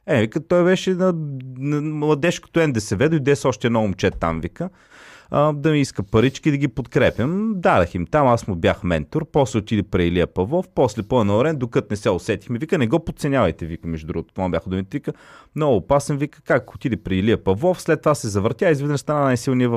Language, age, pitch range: Bulgarian, 30-49, 100-150 Hz